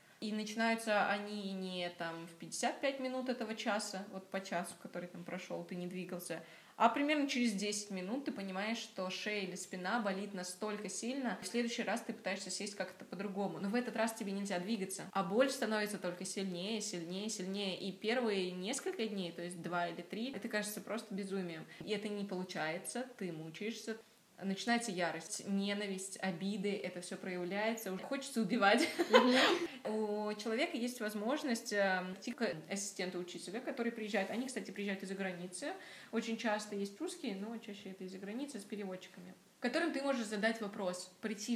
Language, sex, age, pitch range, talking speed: Russian, female, 20-39, 185-225 Hz, 170 wpm